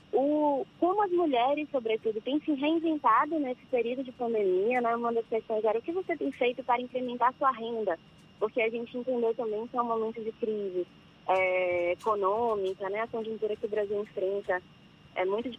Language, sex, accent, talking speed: Portuguese, female, Brazilian, 190 wpm